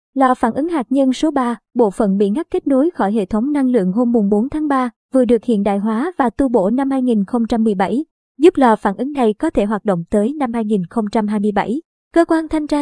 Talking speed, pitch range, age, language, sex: 225 wpm, 215-265 Hz, 20-39, Vietnamese, male